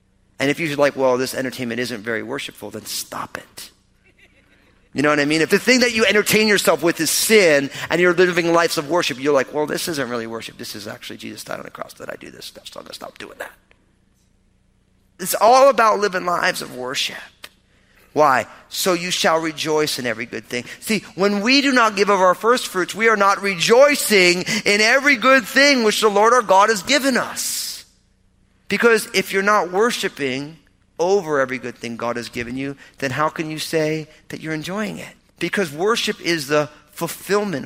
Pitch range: 140-205 Hz